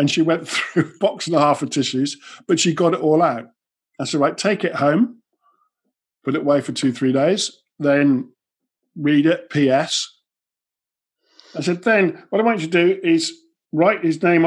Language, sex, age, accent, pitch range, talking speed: English, male, 50-69, British, 145-195 Hz, 195 wpm